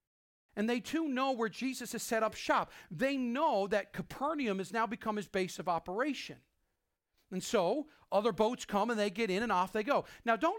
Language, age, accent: English, 40-59, American